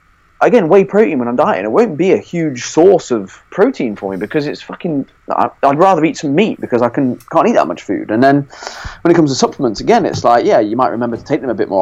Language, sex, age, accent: English, male, 30-49, British